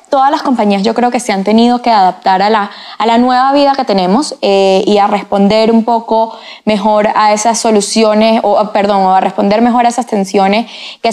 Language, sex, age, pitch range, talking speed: Spanish, female, 10-29, 210-255 Hz, 210 wpm